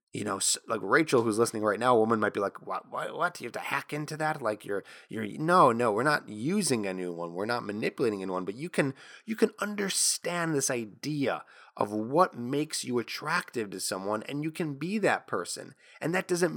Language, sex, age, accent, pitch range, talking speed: English, male, 20-39, American, 105-145 Hz, 220 wpm